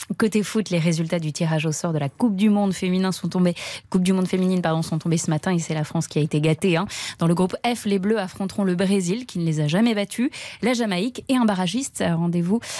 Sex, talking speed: female, 255 wpm